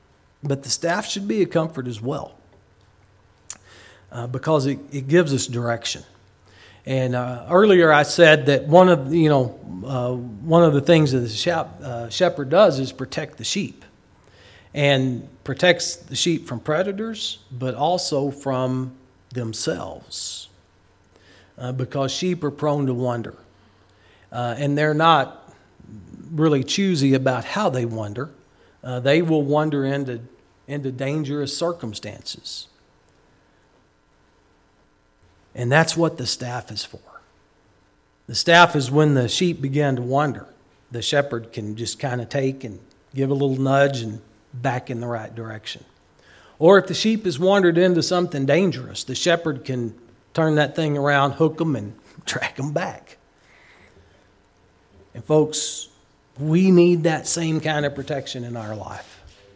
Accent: American